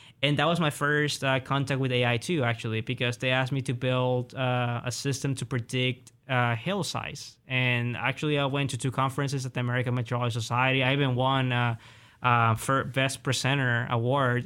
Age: 20-39